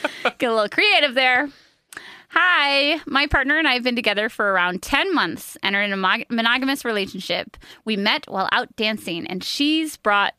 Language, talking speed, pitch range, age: English, 180 wpm, 205-275 Hz, 20-39